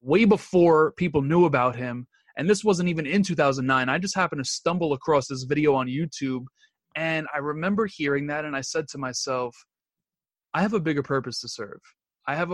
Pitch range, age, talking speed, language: 130-160 Hz, 20-39, 195 wpm, English